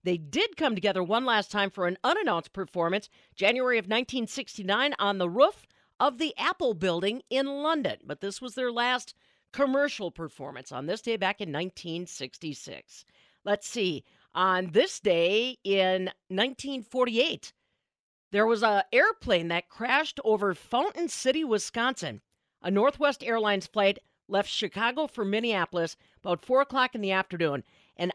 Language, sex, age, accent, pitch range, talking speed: English, female, 50-69, American, 180-255 Hz, 145 wpm